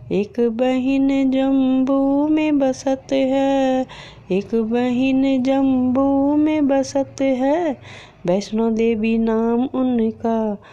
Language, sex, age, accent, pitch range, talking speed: Hindi, female, 20-39, native, 225-260 Hz, 90 wpm